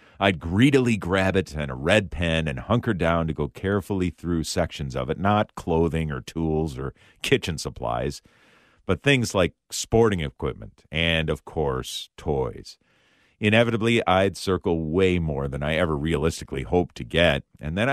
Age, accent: 50-69, American